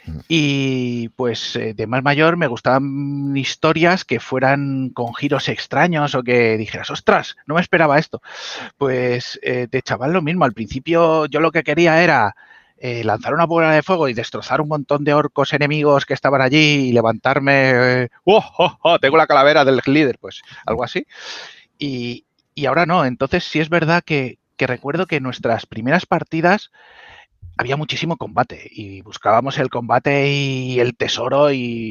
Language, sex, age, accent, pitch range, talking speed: Spanish, male, 30-49, Spanish, 120-155 Hz, 170 wpm